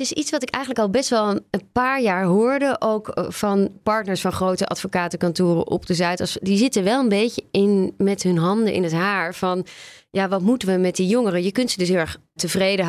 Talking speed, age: 230 wpm, 20-39